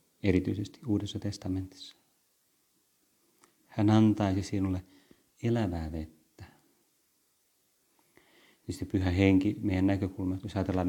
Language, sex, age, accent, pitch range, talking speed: Finnish, male, 30-49, native, 95-105 Hz, 85 wpm